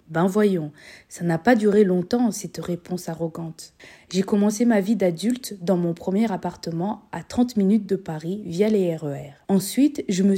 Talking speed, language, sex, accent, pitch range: 175 wpm, French, female, French, 175-230 Hz